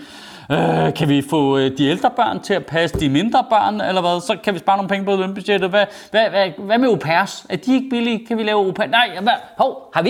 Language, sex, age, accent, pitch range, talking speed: Danish, male, 30-49, native, 165-235 Hz, 255 wpm